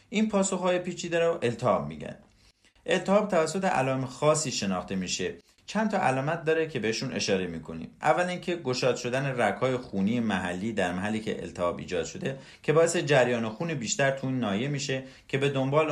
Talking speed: 165 wpm